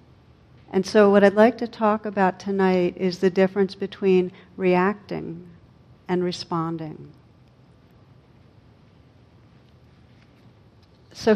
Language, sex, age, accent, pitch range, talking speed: English, female, 60-79, American, 170-195 Hz, 90 wpm